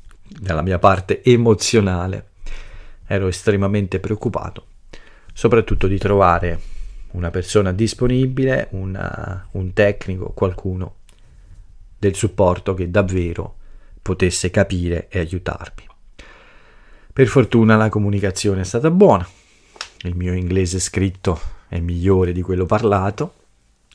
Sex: male